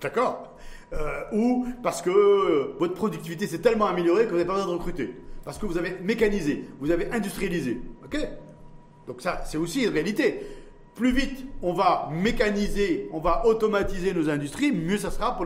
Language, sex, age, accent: French, male, 40-59, French